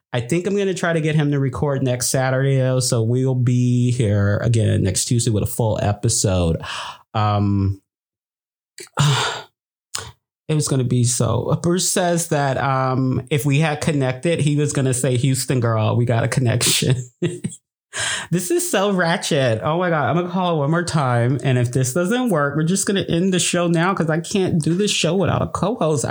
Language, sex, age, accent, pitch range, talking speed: English, male, 30-49, American, 120-175 Hz, 200 wpm